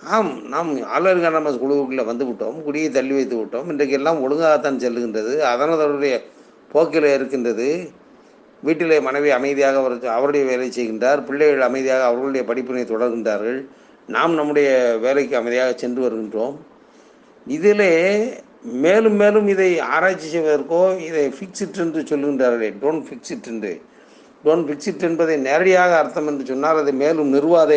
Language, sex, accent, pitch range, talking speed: Tamil, male, native, 125-160 Hz, 125 wpm